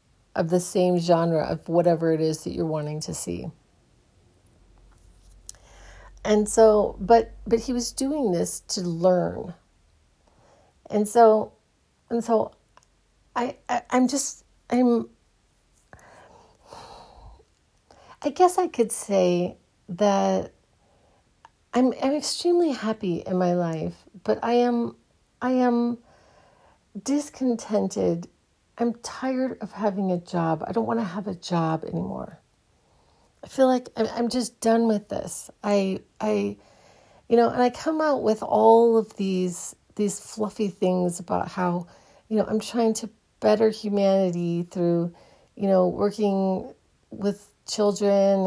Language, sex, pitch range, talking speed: English, female, 180-230 Hz, 130 wpm